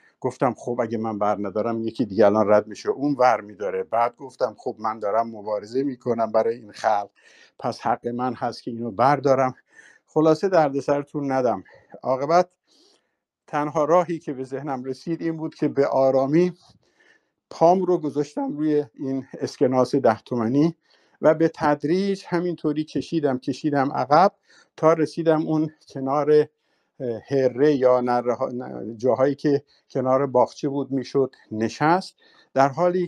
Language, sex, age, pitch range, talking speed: Persian, male, 50-69, 125-155 Hz, 140 wpm